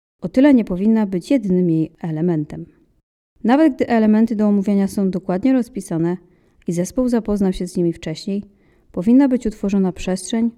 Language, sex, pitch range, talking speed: Polish, female, 175-235 Hz, 155 wpm